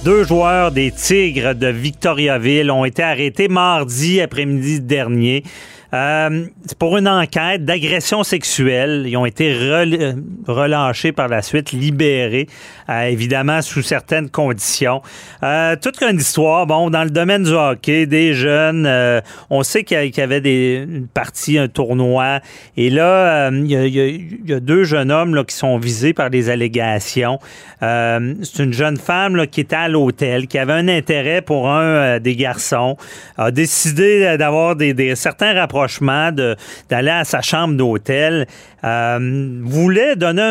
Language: French